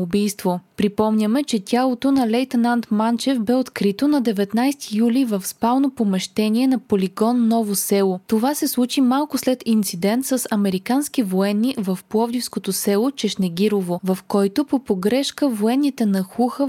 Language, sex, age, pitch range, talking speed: Bulgarian, female, 20-39, 200-255 Hz, 135 wpm